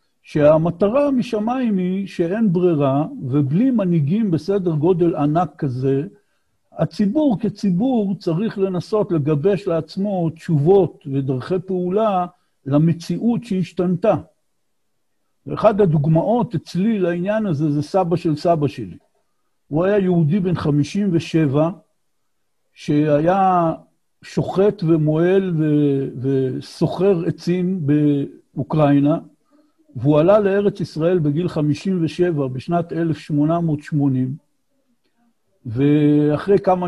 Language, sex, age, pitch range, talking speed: Hebrew, male, 60-79, 150-185 Hz, 85 wpm